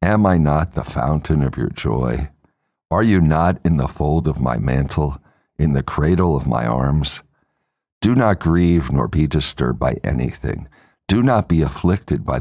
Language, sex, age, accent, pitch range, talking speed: English, male, 60-79, American, 70-90 Hz, 175 wpm